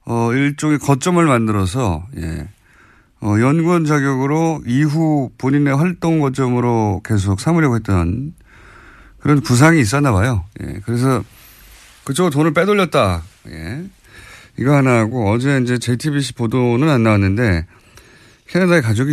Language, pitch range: Korean, 100-145 Hz